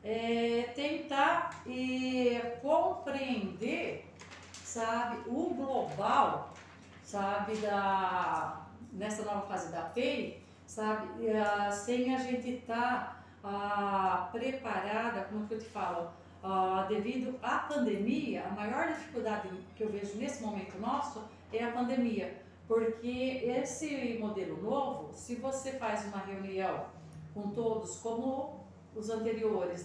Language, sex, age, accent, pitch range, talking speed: Portuguese, female, 40-59, Brazilian, 200-250 Hz, 115 wpm